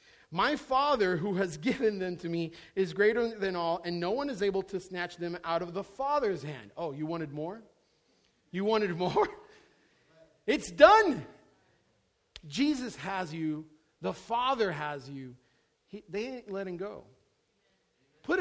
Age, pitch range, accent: 40-59, 165-230 Hz, American